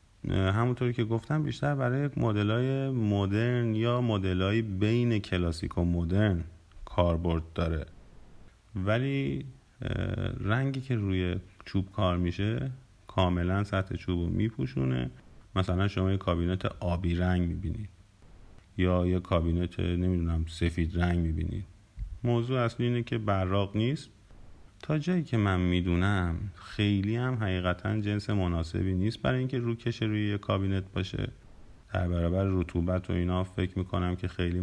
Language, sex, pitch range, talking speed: Persian, male, 90-110 Hz, 125 wpm